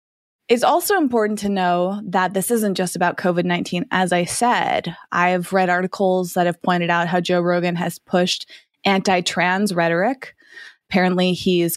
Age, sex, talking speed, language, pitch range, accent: 20-39, female, 155 wpm, English, 170-200 Hz, American